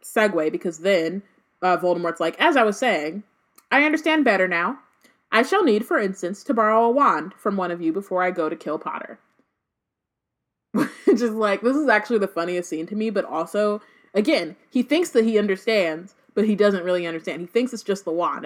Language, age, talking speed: English, 20-39, 205 wpm